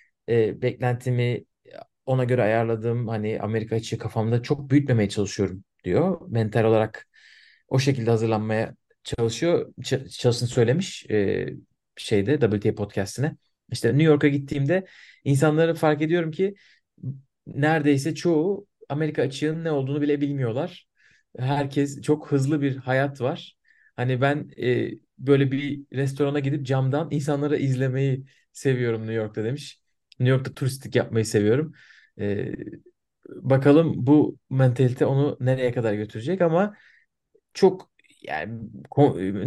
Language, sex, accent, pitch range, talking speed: Turkish, male, native, 110-150 Hz, 120 wpm